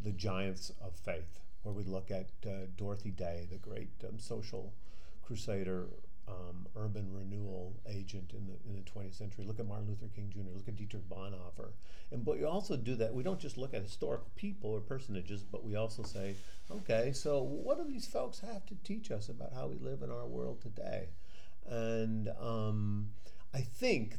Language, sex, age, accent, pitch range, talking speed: English, male, 40-59, American, 95-110 Hz, 190 wpm